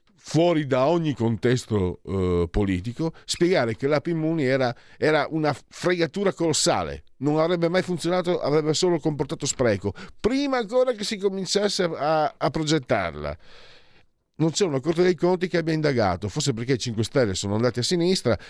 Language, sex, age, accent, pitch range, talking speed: Italian, male, 50-69, native, 100-155 Hz, 155 wpm